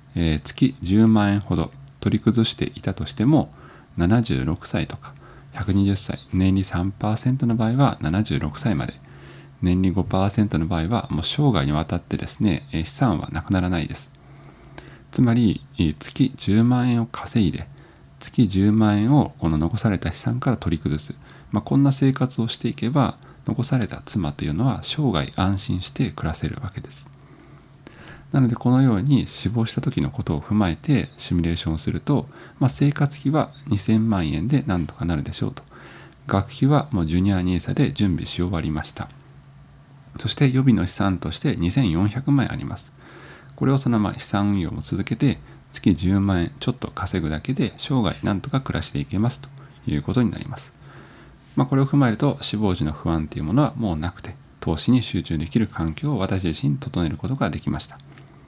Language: Japanese